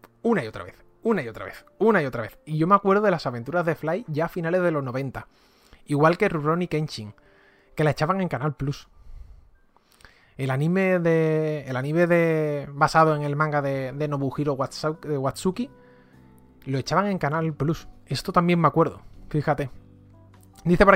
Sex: male